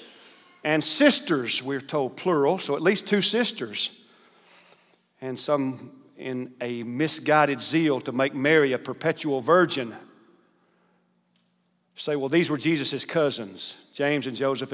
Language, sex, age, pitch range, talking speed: English, male, 50-69, 135-180 Hz, 125 wpm